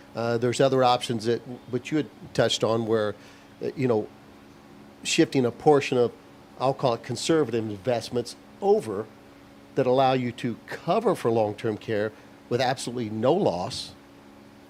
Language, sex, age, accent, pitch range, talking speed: English, male, 50-69, American, 100-125 Hz, 150 wpm